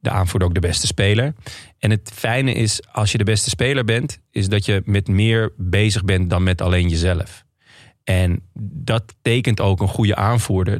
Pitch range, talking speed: 100-115 Hz, 190 wpm